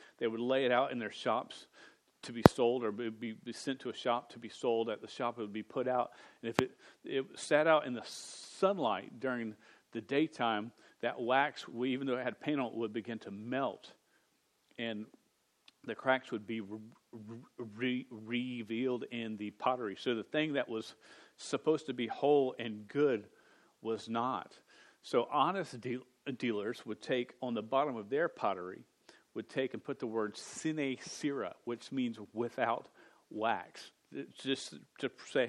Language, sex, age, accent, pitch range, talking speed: English, male, 40-59, American, 115-130 Hz, 170 wpm